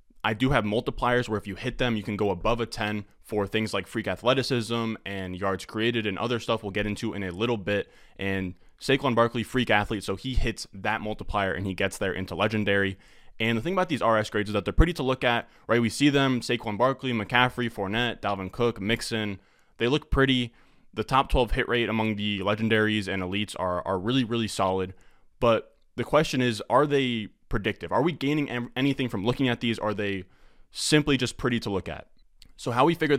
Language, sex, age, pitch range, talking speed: English, male, 20-39, 100-125 Hz, 220 wpm